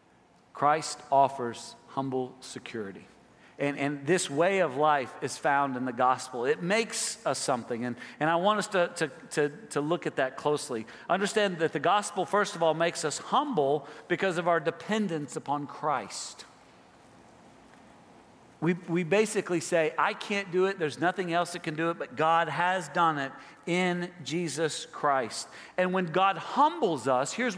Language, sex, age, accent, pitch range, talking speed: English, male, 40-59, American, 150-200 Hz, 165 wpm